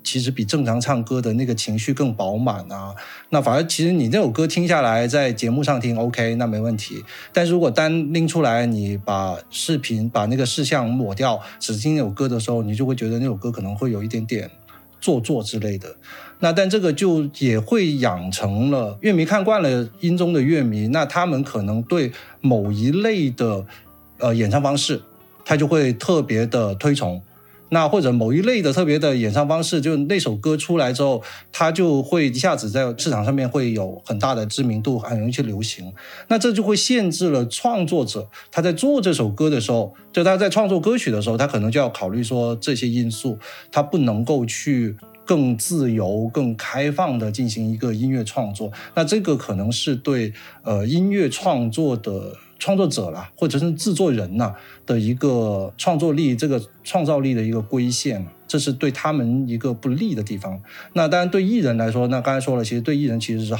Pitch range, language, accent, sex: 115-155 Hz, Chinese, native, male